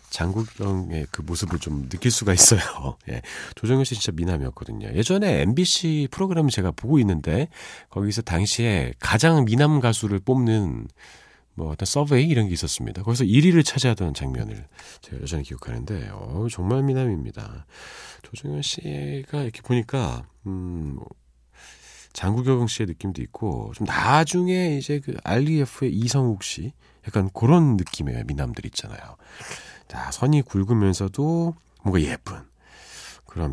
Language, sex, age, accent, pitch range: Korean, male, 40-59, native, 85-130 Hz